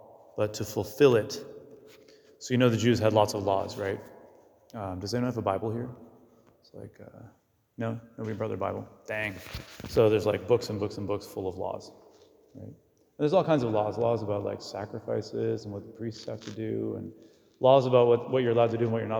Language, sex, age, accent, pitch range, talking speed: English, male, 30-49, American, 100-115 Hz, 225 wpm